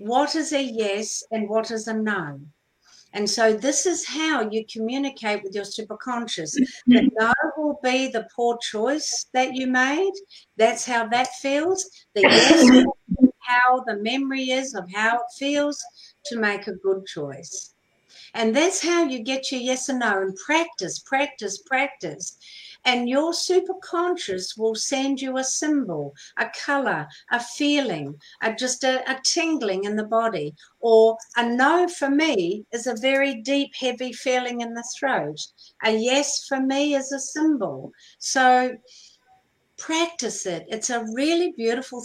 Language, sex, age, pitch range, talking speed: English, female, 60-79, 225-280 Hz, 155 wpm